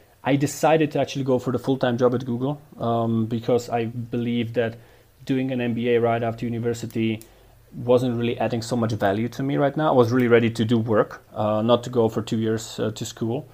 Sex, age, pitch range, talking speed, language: male, 30-49, 110-125 Hz, 215 wpm, Slovak